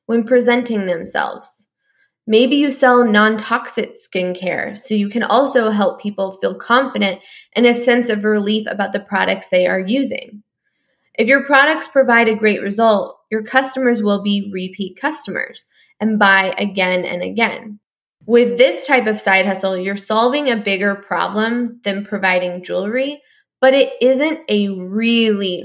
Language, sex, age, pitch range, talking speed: English, female, 10-29, 195-250 Hz, 150 wpm